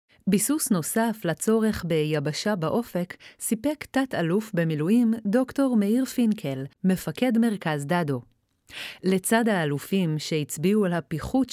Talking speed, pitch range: 100 wpm, 165-220 Hz